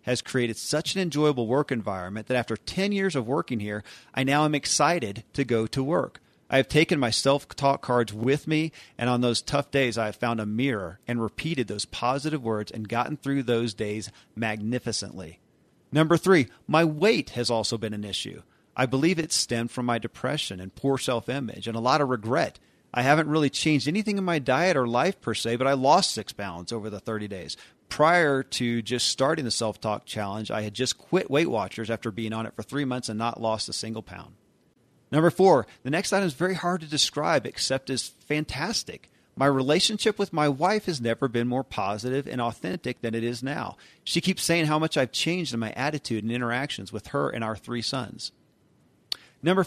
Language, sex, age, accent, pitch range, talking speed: English, male, 40-59, American, 115-150 Hz, 205 wpm